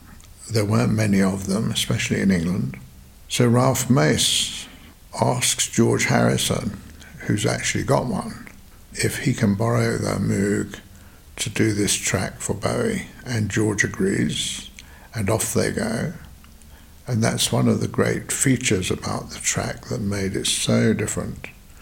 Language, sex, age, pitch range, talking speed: English, male, 60-79, 95-115 Hz, 145 wpm